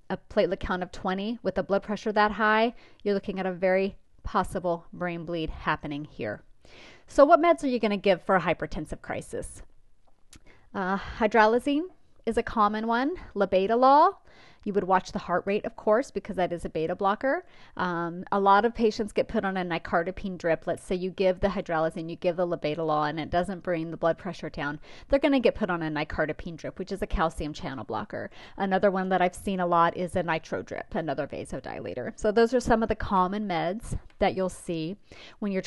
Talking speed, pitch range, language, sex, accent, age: 205 wpm, 175-220 Hz, English, female, American, 30-49